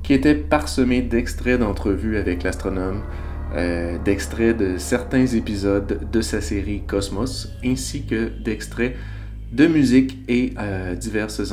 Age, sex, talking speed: 30-49, male, 125 wpm